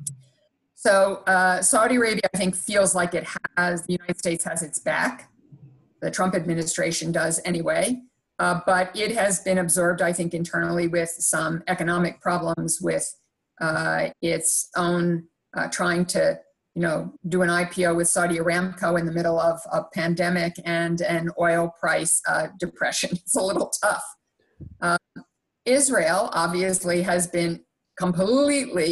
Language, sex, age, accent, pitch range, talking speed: English, female, 50-69, American, 170-190 Hz, 145 wpm